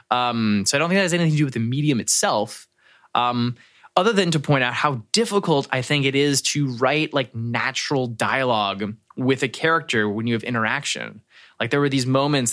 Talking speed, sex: 205 wpm, male